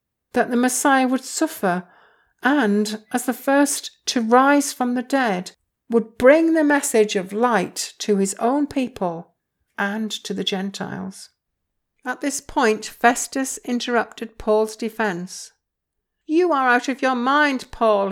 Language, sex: English, female